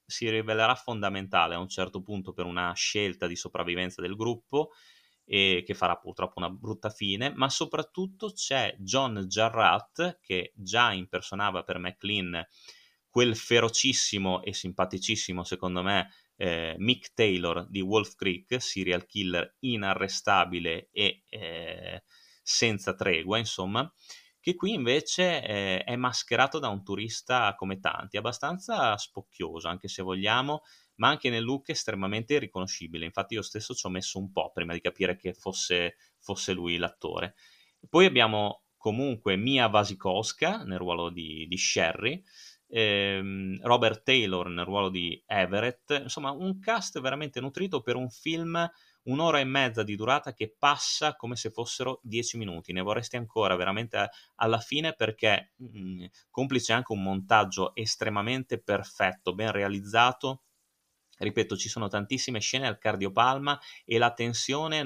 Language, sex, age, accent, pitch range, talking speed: Italian, male, 30-49, native, 95-125 Hz, 140 wpm